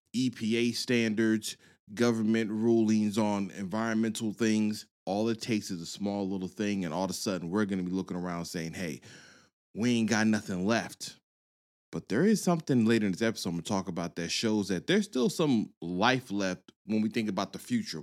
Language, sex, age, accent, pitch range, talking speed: English, male, 20-39, American, 90-115 Hz, 200 wpm